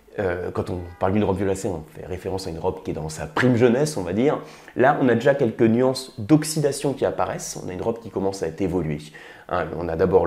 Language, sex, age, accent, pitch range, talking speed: French, male, 30-49, French, 100-130 Hz, 255 wpm